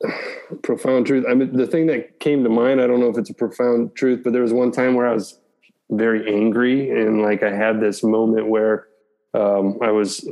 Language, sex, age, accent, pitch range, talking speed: English, male, 20-39, American, 110-120 Hz, 220 wpm